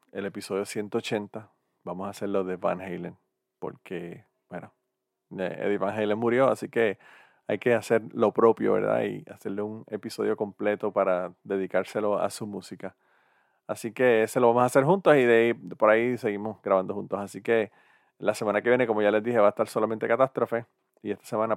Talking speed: 185 wpm